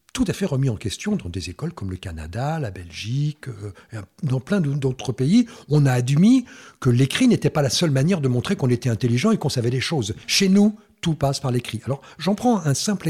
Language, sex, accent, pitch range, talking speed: French, male, French, 125-180 Hz, 230 wpm